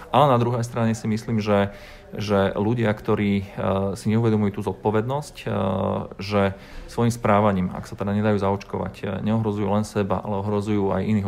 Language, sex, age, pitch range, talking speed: Slovak, male, 40-59, 95-110 Hz, 155 wpm